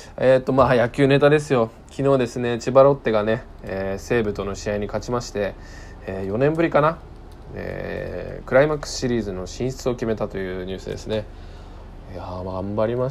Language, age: Japanese, 20-39